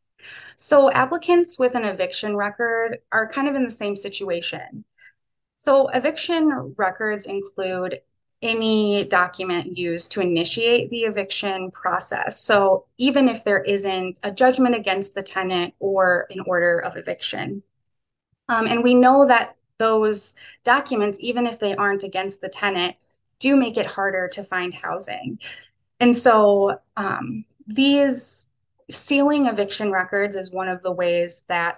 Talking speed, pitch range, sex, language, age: 140 wpm, 185-235 Hz, female, English, 20-39